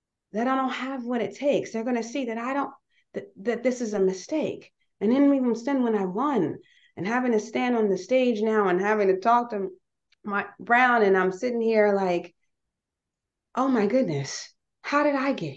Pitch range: 185-255 Hz